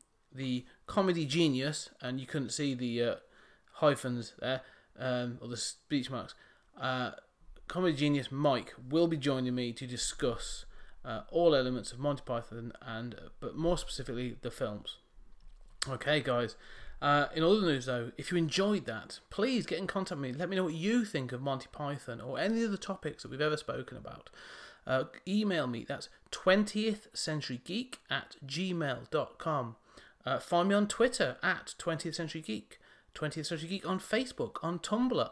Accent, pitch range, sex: British, 130-185 Hz, male